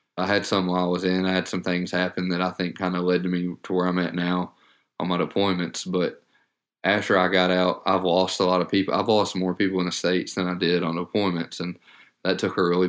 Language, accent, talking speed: English, American, 260 wpm